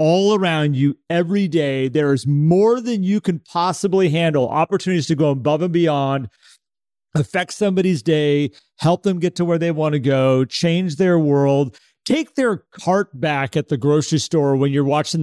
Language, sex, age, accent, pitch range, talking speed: English, male, 40-59, American, 145-180 Hz, 175 wpm